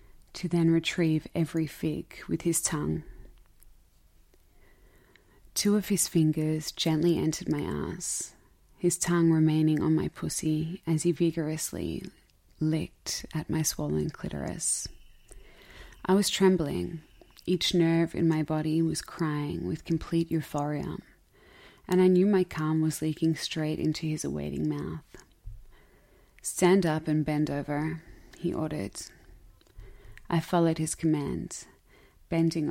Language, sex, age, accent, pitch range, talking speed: English, female, 20-39, Australian, 145-165 Hz, 125 wpm